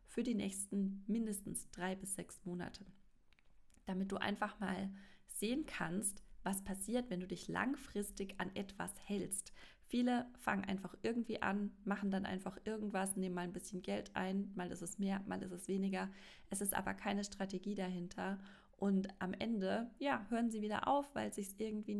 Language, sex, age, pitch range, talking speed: German, female, 20-39, 185-225 Hz, 175 wpm